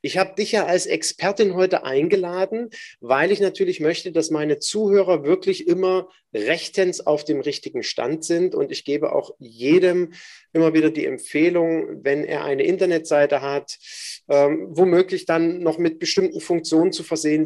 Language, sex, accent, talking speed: German, male, German, 160 wpm